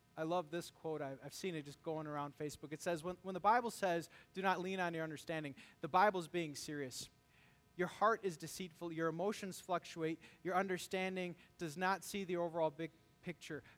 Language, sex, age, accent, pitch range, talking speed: English, male, 30-49, American, 150-195 Hz, 190 wpm